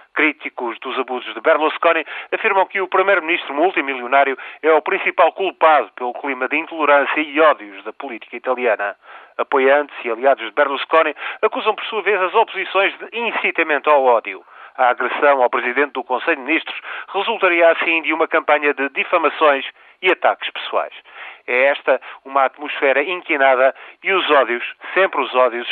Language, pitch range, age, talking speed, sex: Portuguese, 135-175 Hz, 40-59, 155 wpm, male